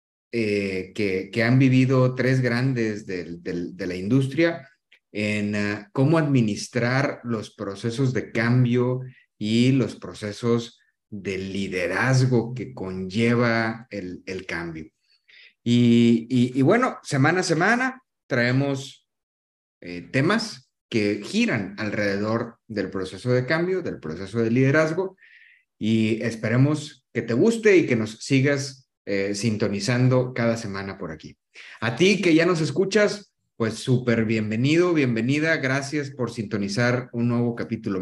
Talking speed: 130 wpm